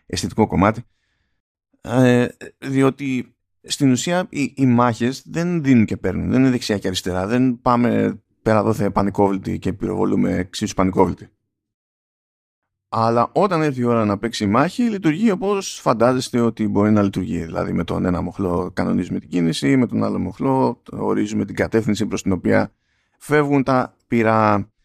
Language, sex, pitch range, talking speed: Greek, male, 95-130 Hz, 160 wpm